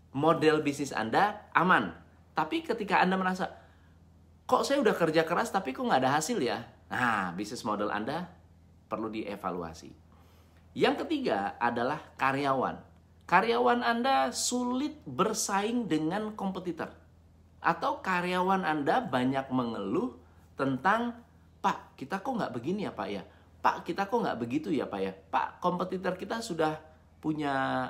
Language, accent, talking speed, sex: Indonesian, native, 135 wpm, male